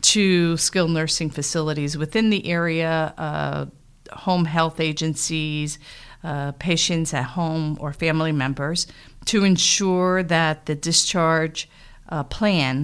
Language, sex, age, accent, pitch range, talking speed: English, female, 50-69, American, 140-165 Hz, 115 wpm